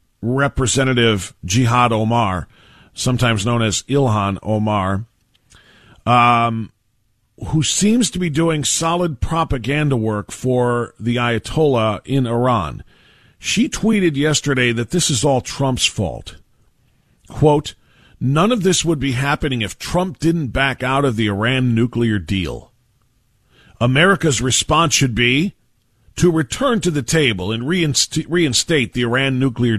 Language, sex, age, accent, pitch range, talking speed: English, male, 40-59, American, 115-155 Hz, 125 wpm